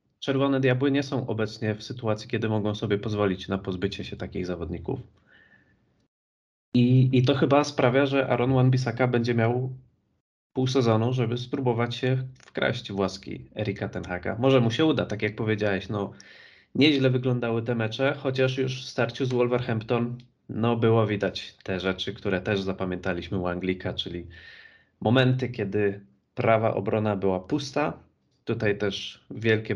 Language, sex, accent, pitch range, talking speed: Polish, male, native, 95-125 Hz, 145 wpm